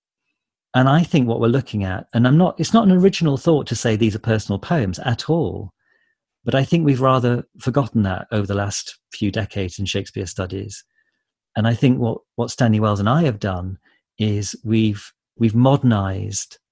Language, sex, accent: English, male, British